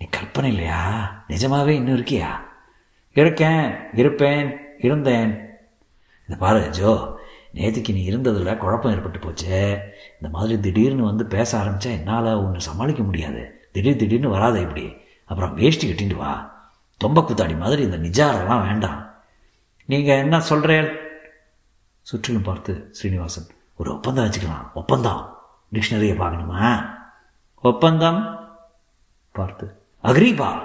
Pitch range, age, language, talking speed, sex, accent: 95-130 Hz, 60-79, Tamil, 105 wpm, male, native